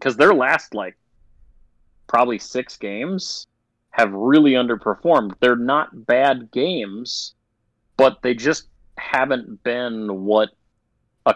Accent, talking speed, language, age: American, 110 wpm, English, 30-49